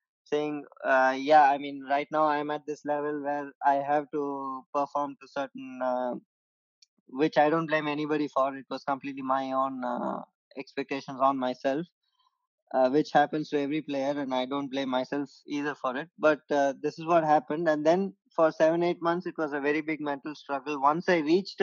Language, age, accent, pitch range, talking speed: Telugu, 20-39, native, 140-165 Hz, 195 wpm